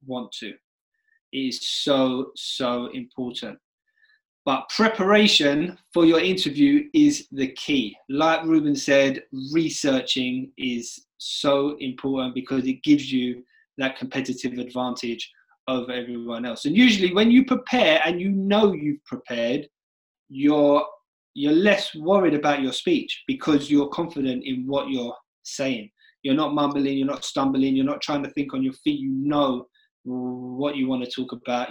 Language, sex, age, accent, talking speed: English, male, 20-39, British, 150 wpm